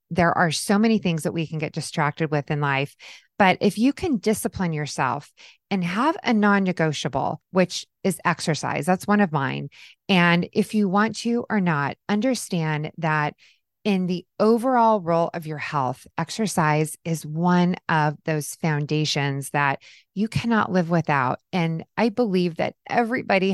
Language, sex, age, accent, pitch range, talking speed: English, female, 20-39, American, 160-210 Hz, 160 wpm